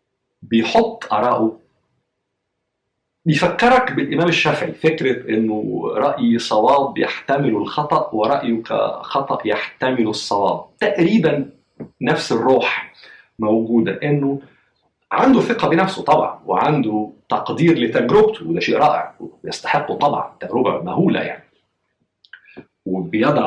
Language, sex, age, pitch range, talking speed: Arabic, male, 50-69, 115-170 Hz, 90 wpm